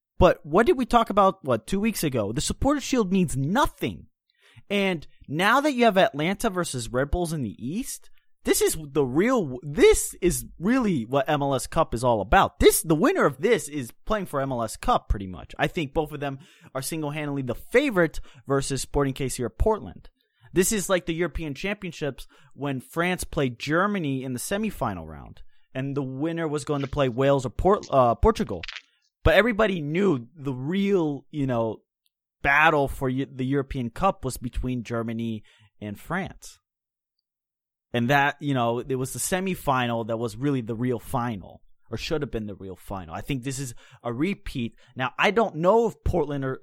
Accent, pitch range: American, 125-180 Hz